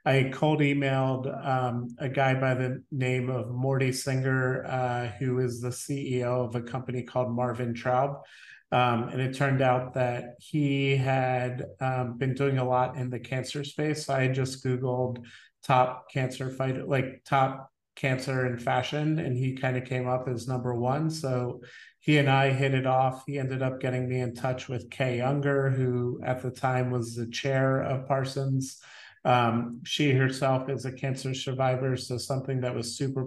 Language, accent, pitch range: English, American, 125-135 Hz